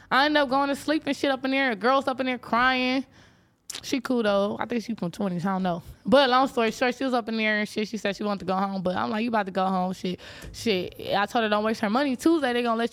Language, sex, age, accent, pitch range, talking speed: English, female, 20-39, American, 205-280 Hz, 310 wpm